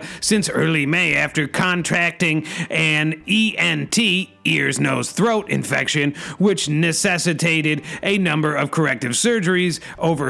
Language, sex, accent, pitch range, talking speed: English, male, American, 155-185 Hz, 100 wpm